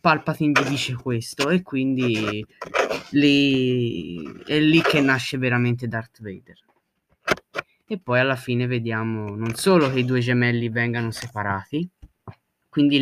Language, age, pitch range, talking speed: Italian, 20-39, 115-140 Hz, 125 wpm